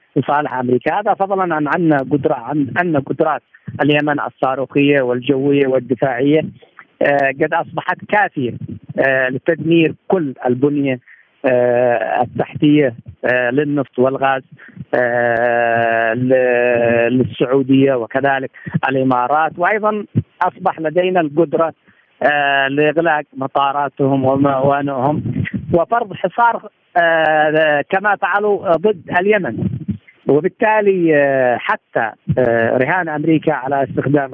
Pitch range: 135-175 Hz